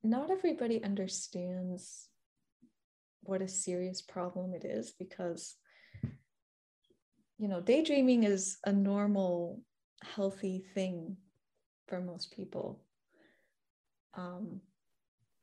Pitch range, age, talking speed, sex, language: 180-205 Hz, 20-39, 85 wpm, female, English